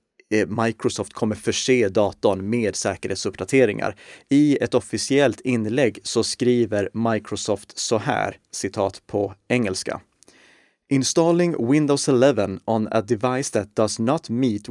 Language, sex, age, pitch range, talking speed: Swedish, male, 30-49, 110-135 Hz, 115 wpm